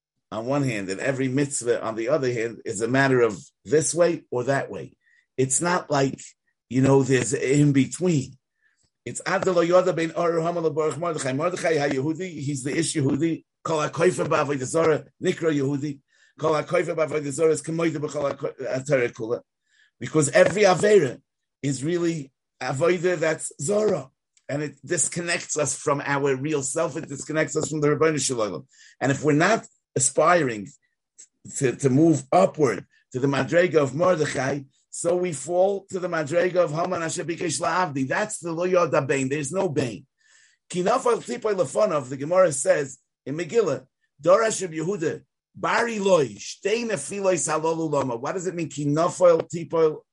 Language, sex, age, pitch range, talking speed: English, male, 50-69, 140-180 Hz, 165 wpm